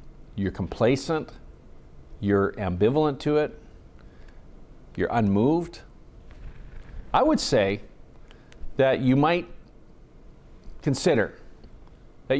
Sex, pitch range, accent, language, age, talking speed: male, 95-140 Hz, American, English, 50-69, 75 wpm